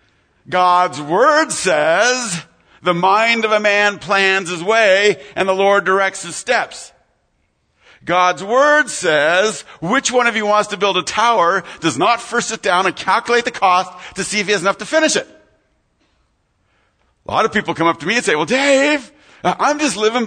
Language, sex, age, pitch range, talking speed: English, male, 50-69, 170-240 Hz, 185 wpm